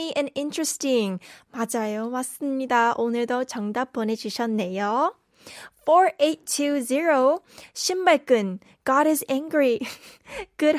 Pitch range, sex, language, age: 240-310 Hz, female, Korean, 20-39